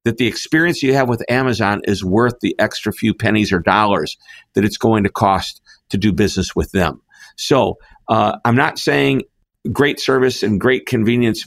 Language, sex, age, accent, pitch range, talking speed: English, male, 50-69, American, 105-125 Hz, 185 wpm